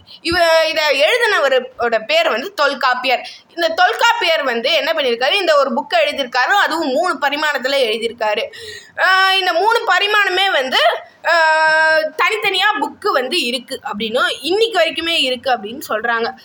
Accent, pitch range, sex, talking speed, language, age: native, 265-380 Hz, female, 75 wpm, Tamil, 20-39